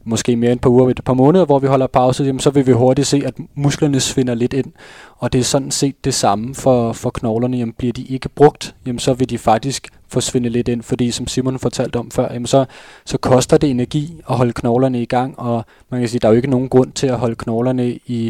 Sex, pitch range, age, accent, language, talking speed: male, 120-130 Hz, 20-39, native, Danish, 260 wpm